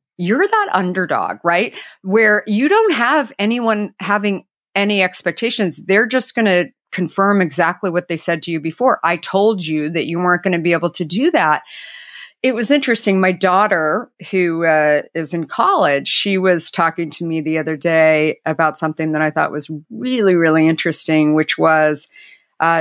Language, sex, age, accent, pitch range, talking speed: English, female, 50-69, American, 165-210 Hz, 175 wpm